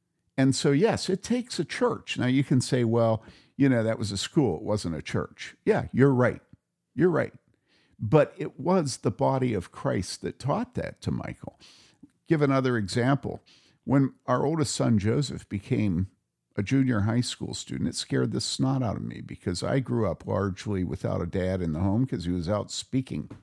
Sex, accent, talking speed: male, American, 195 wpm